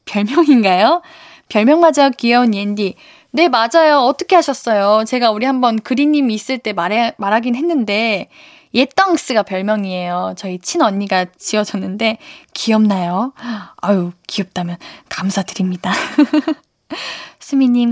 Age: 10-29